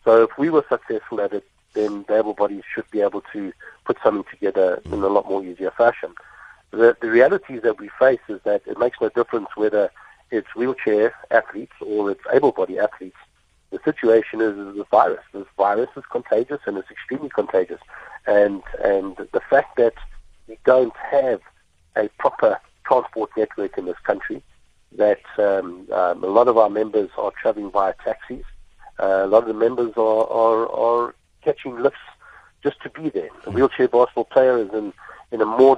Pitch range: 105-130 Hz